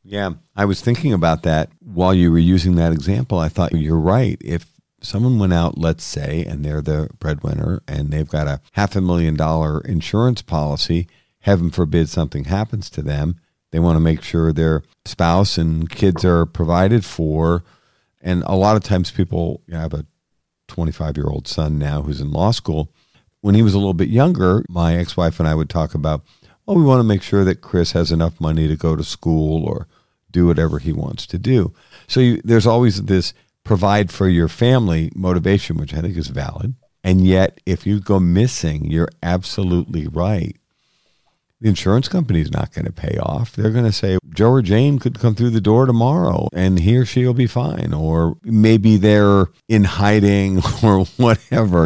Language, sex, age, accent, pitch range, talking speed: English, male, 50-69, American, 80-105 Hz, 190 wpm